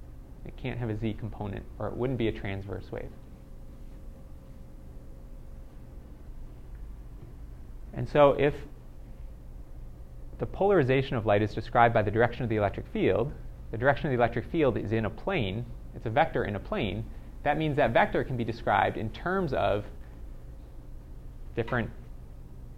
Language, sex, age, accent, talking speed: English, male, 30-49, American, 150 wpm